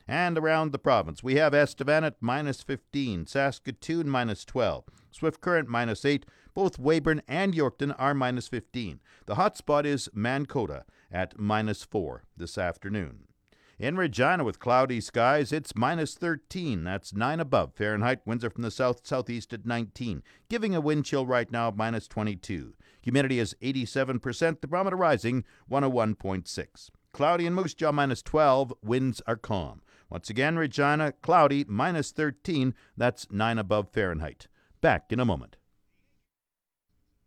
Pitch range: 110-150 Hz